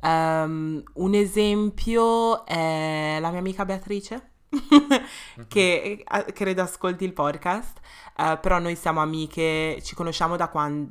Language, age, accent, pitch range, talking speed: Italian, 20-39, native, 145-170 Hz, 120 wpm